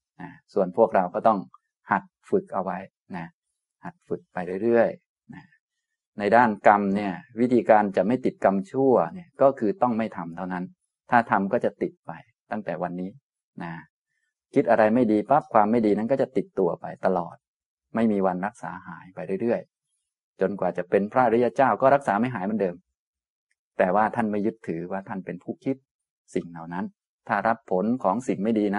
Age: 20-39